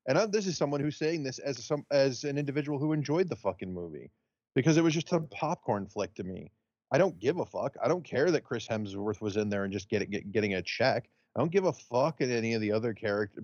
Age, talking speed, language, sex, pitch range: 30-49, 270 wpm, English, male, 110-140 Hz